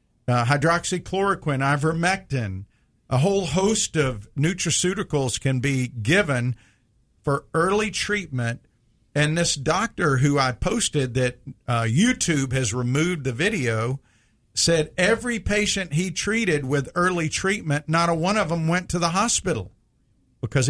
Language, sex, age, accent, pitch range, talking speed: English, male, 50-69, American, 120-160 Hz, 130 wpm